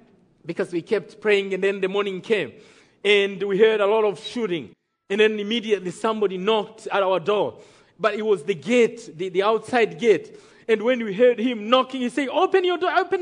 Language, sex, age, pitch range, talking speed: English, male, 40-59, 220-330 Hz, 205 wpm